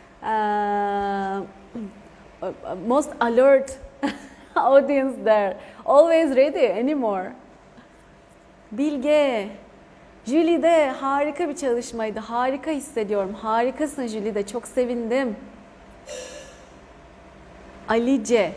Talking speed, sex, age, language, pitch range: 60 wpm, female, 30-49, Turkish, 195-265 Hz